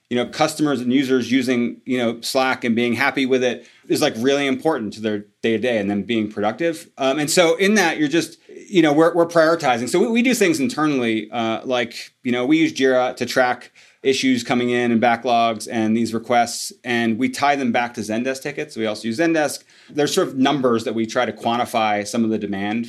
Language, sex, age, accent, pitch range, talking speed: English, male, 30-49, American, 110-135 Hz, 225 wpm